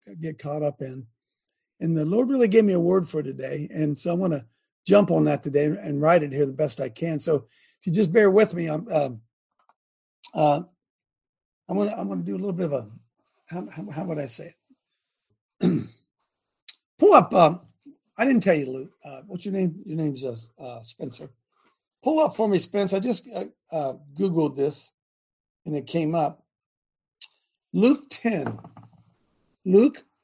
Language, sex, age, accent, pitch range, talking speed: English, male, 60-79, American, 140-190 Hz, 185 wpm